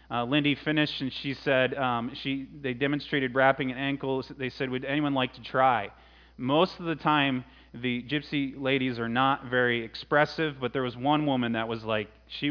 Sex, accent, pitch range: male, American, 115-135 Hz